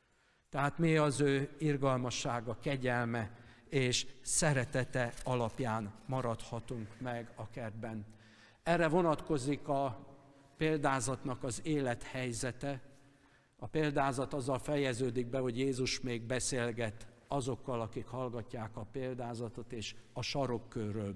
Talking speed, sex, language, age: 100 wpm, male, Hungarian, 60-79